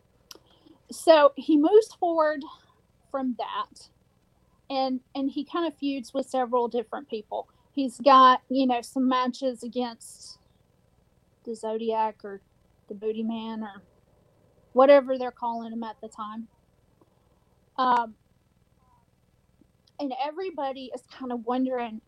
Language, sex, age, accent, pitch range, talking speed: English, female, 40-59, American, 220-265 Hz, 120 wpm